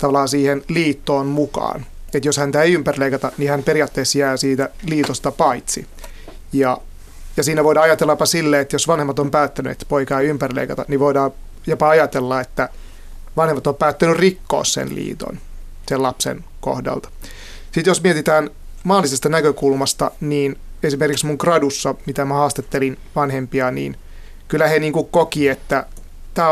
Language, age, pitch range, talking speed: Finnish, 30-49, 135-155 Hz, 150 wpm